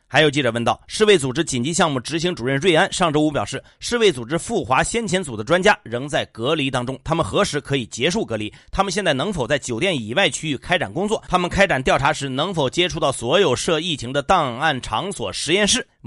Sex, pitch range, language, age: male, 130-175 Hz, Chinese, 30-49